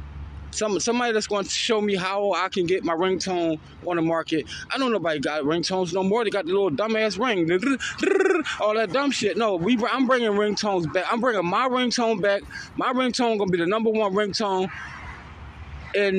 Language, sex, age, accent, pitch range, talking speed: English, male, 20-39, American, 135-210 Hz, 200 wpm